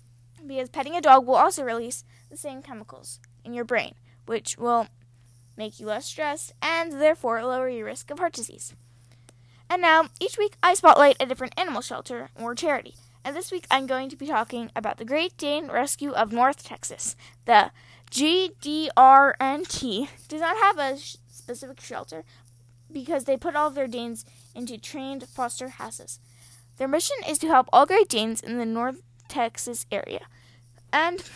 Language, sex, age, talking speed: English, female, 10-29, 165 wpm